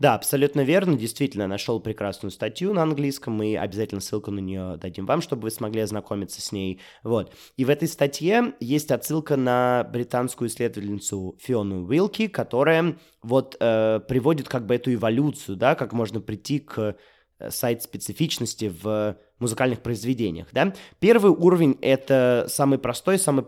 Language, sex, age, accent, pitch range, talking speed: Russian, male, 20-39, native, 110-145 Hz, 150 wpm